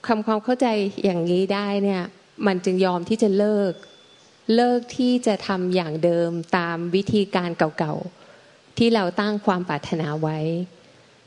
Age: 20-39